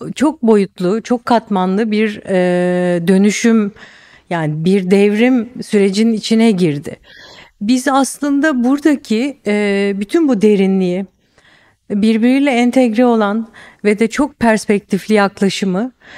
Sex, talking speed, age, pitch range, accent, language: female, 105 wpm, 50-69, 195-235 Hz, native, Turkish